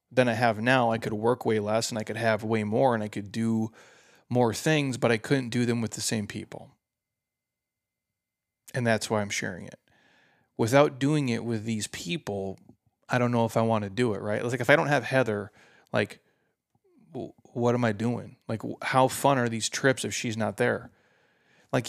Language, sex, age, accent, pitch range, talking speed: English, male, 30-49, American, 110-135 Hz, 205 wpm